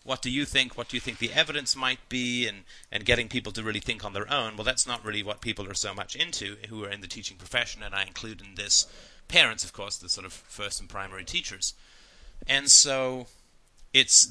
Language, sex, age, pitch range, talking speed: English, male, 30-49, 105-125 Hz, 235 wpm